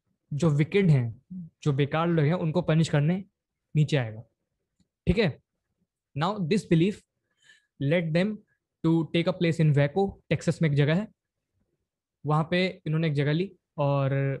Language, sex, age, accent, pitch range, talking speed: Hindi, male, 20-39, native, 145-180 Hz, 150 wpm